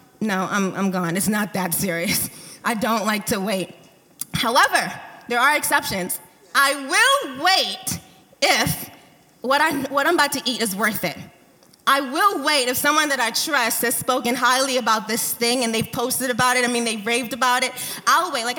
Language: English